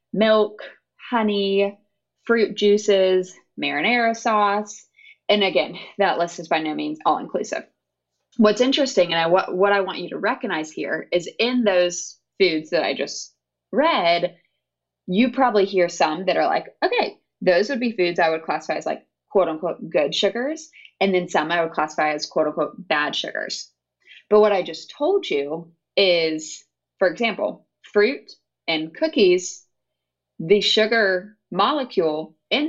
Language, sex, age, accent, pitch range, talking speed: English, female, 20-39, American, 165-210 Hz, 145 wpm